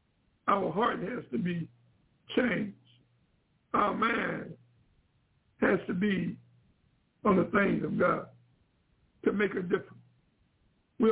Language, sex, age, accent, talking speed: English, male, 60-79, American, 115 wpm